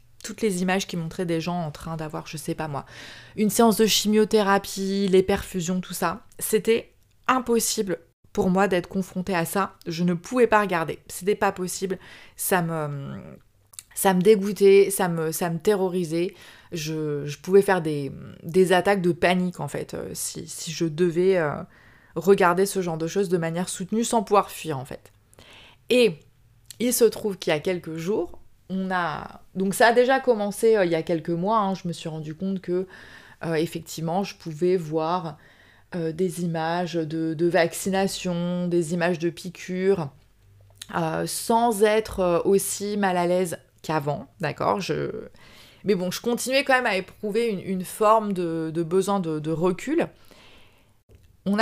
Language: French